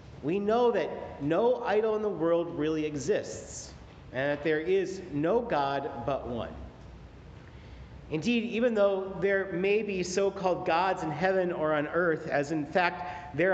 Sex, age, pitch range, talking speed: male, 40-59, 145-195 Hz, 155 wpm